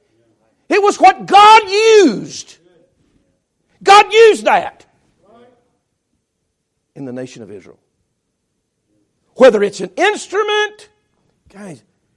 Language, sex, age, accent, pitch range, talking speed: English, male, 60-79, American, 155-230 Hz, 90 wpm